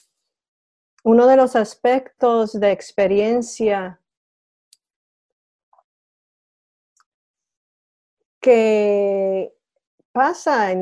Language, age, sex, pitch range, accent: English, 40-59, female, 200-240 Hz, American